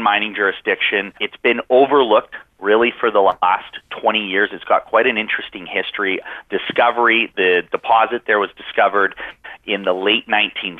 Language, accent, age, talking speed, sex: English, American, 30-49, 145 wpm, male